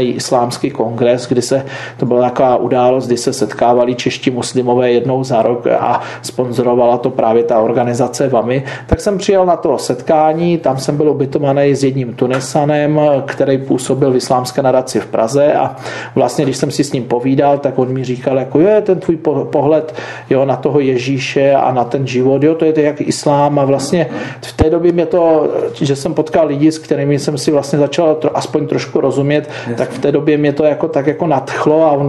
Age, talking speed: 40-59, 200 wpm